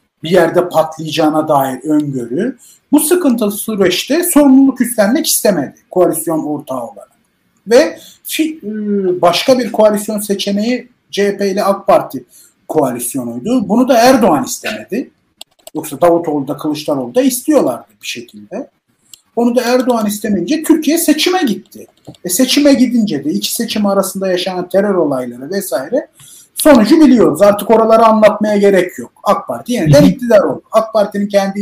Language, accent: Turkish, native